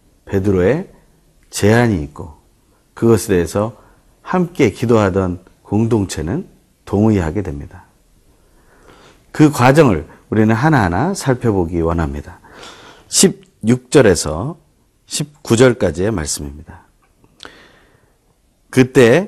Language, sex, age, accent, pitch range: Korean, male, 40-59, native, 100-140 Hz